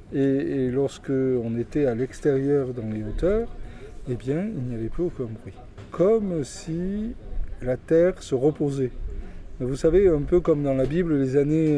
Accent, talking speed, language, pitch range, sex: French, 175 wpm, French, 130-170 Hz, male